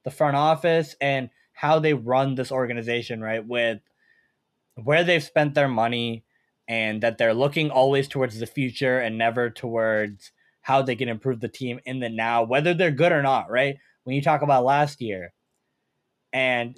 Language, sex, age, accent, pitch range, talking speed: English, male, 20-39, American, 125-160 Hz, 175 wpm